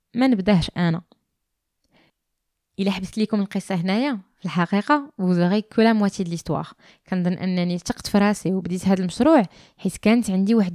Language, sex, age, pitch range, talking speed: Arabic, female, 20-39, 185-235 Hz, 145 wpm